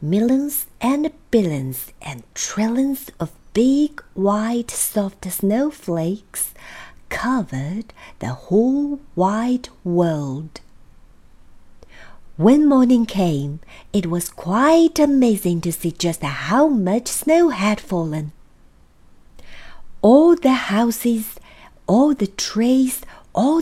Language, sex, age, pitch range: Chinese, female, 50-69, 170-265 Hz